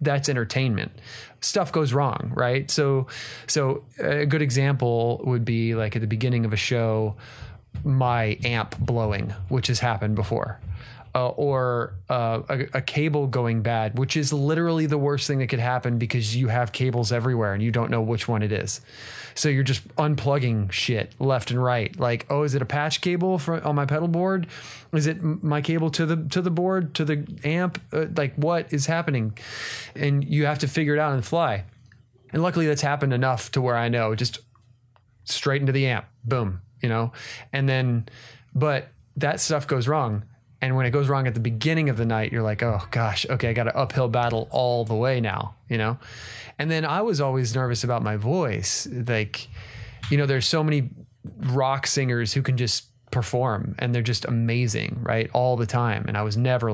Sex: male